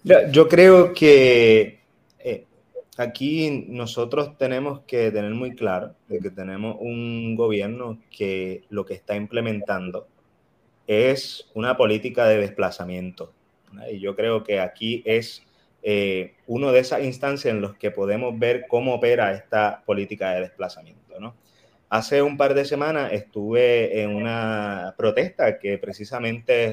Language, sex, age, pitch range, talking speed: Spanish, male, 30-49, 105-135 Hz, 135 wpm